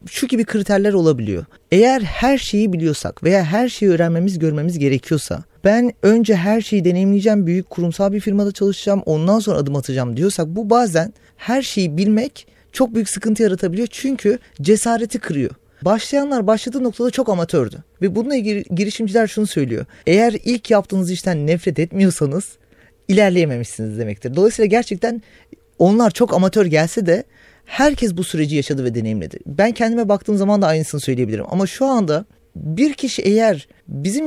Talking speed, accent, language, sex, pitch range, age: 150 wpm, native, Turkish, male, 170-230 Hz, 30-49